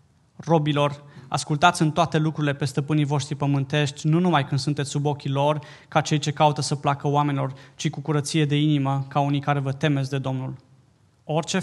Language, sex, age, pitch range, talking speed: Romanian, male, 20-39, 140-155 Hz, 185 wpm